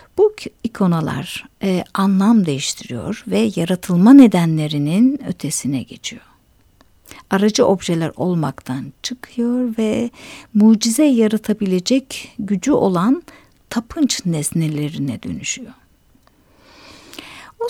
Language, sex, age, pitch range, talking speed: Turkish, female, 60-79, 175-245 Hz, 75 wpm